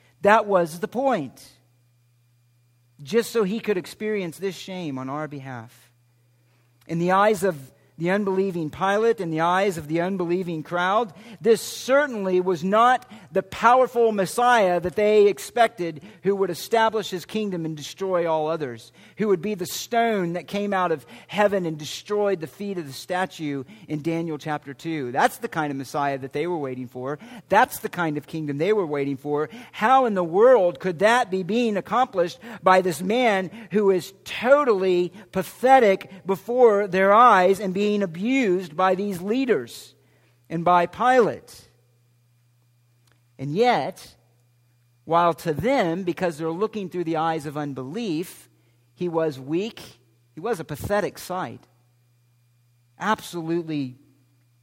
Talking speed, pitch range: 150 wpm, 135-195 Hz